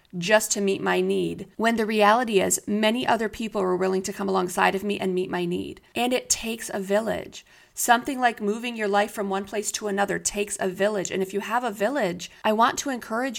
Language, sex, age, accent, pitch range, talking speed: English, female, 30-49, American, 195-235 Hz, 230 wpm